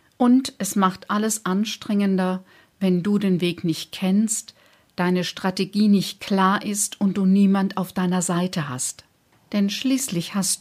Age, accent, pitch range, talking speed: 50-69, German, 175-205 Hz, 145 wpm